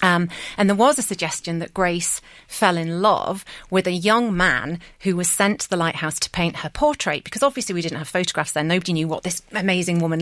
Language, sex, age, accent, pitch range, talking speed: English, female, 40-59, British, 165-195 Hz, 225 wpm